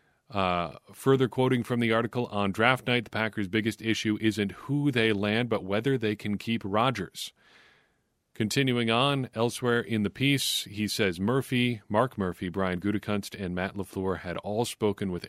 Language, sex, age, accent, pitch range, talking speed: English, male, 40-59, American, 95-120 Hz, 170 wpm